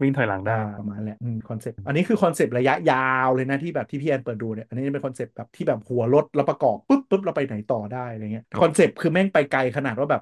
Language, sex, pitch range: Thai, male, 125-155 Hz